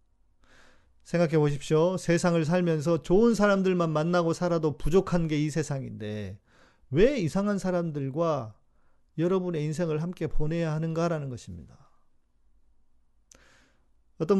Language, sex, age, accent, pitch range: Korean, male, 40-59, native, 105-165 Hz